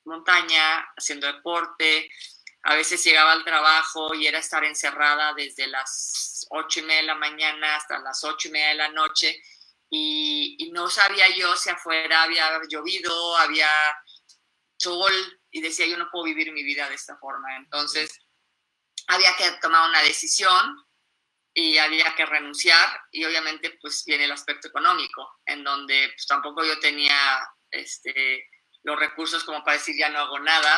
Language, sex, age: Spanish, female, 20-39